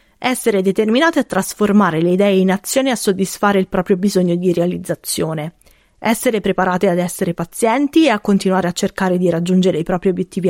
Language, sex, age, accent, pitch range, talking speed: Italian, female, 30-49, native, 185-225 Hz, 175 wpm